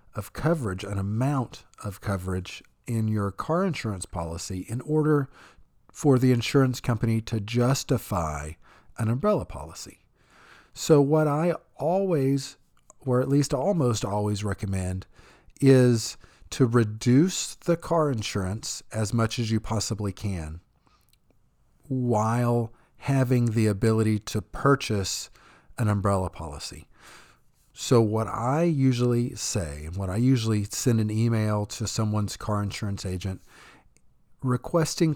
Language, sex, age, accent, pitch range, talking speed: English, male, 40-59, American, 100-130 Hz, 120 wpm